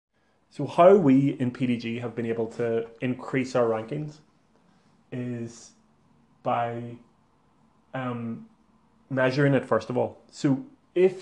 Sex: male